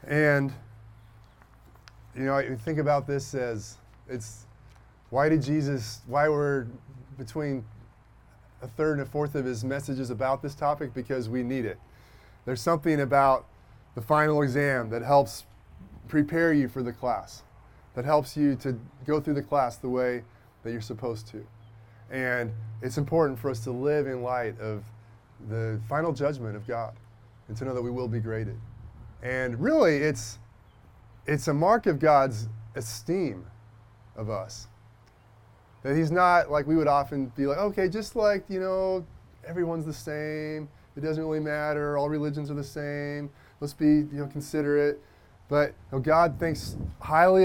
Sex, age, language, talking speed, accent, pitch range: male, 20-39, English, 160 wpm, American, 110-145 Hz